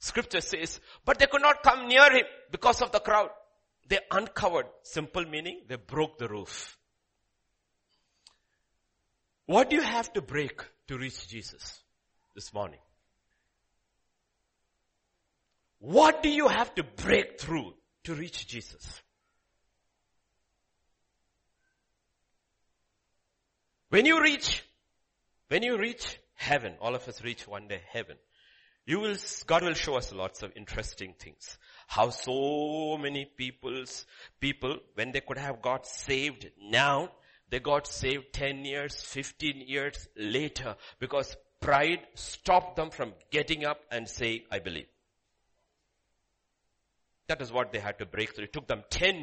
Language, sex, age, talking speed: English, male, 60-79, 130 wpm